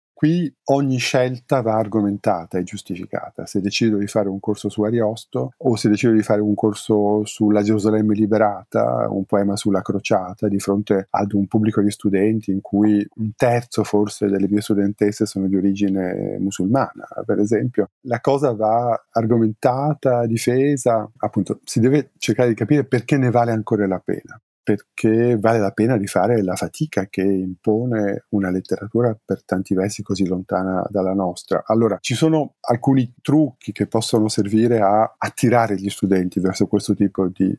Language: Italian